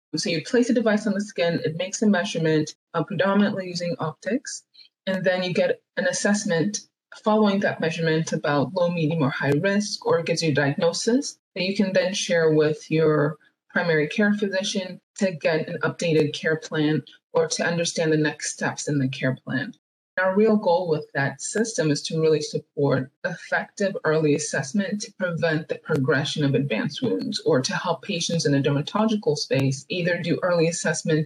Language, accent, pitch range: English, American, 145-190 Hz